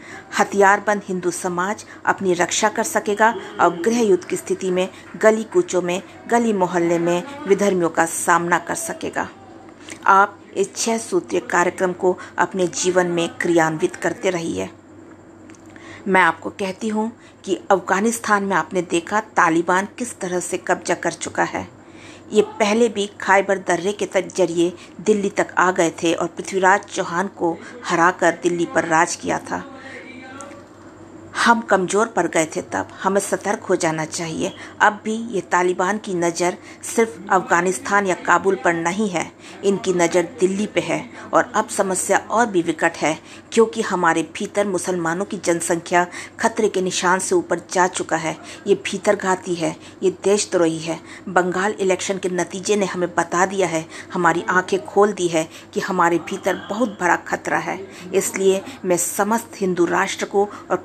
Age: 50-69